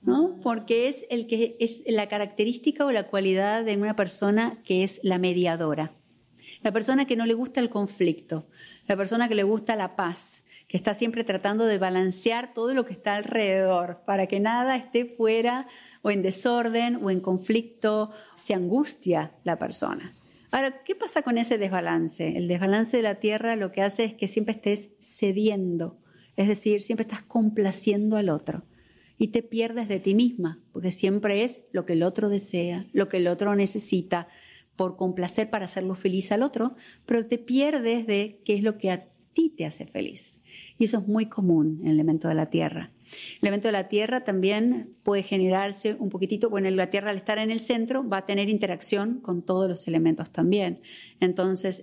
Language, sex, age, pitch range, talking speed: Spanish, female, 40-59, 185-230 Hz, 190 wpm